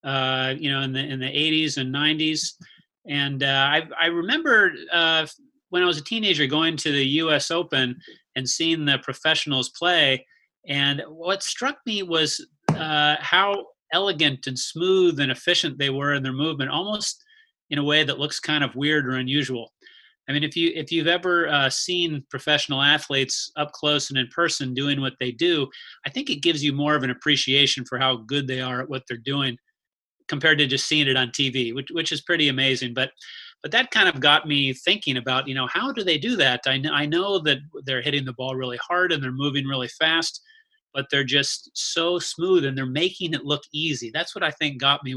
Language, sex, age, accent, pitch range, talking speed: English, male, 30-49, American, 135-165 Hz, 210 wpm